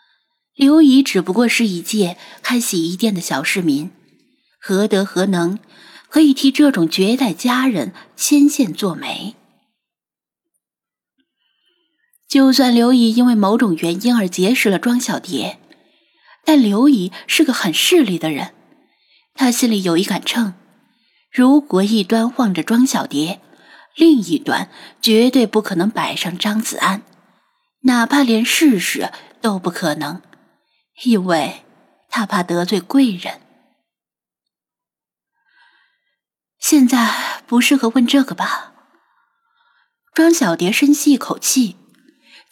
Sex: female